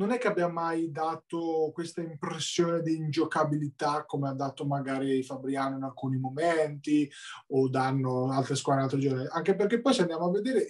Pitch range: 155-195 Hz